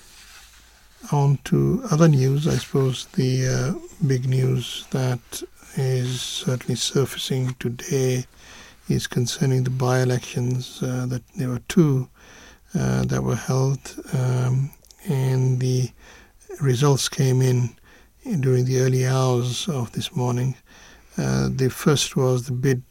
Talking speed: 120 wpm